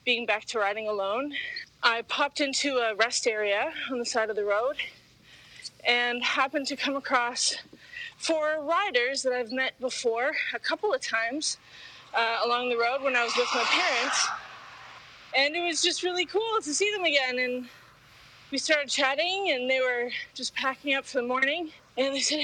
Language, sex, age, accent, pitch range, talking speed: English, female, 30-49, American, 230-295 Hz, 180 wpm